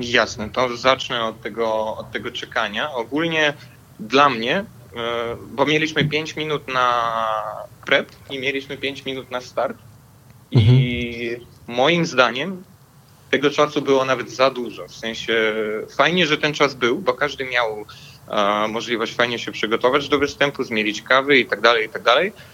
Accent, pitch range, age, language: native, 115-140 Hz, 20-39, Polish